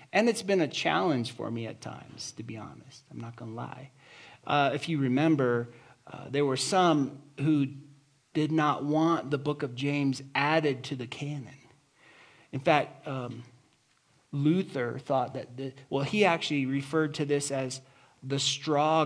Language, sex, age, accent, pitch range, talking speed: English, male, 40-59, American, 140-165 Hz, 160 wpm